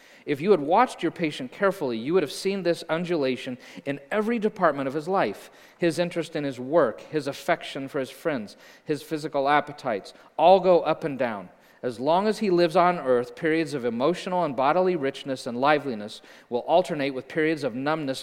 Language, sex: English, male